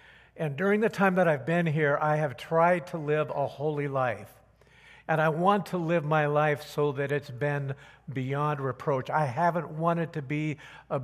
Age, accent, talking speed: 60-79, American, 190 wpm